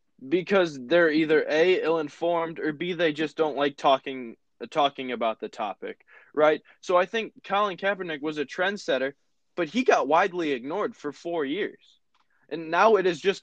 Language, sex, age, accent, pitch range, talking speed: English, male, 20-39, American, 140-190 Hz, 175 wpm